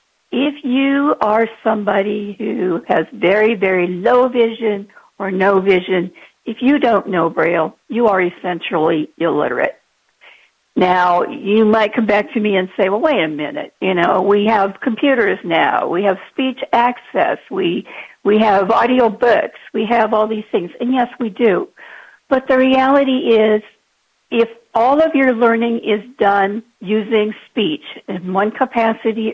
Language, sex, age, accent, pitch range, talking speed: English, female, 50-69, American, 195-245 Hz, 155 wpm